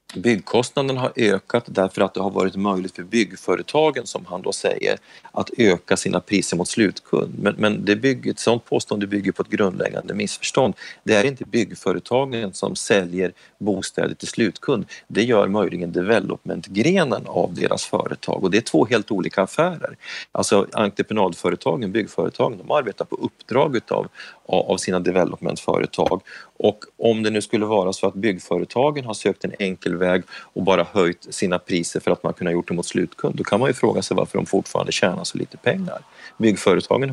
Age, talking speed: 30-49, 175 wpm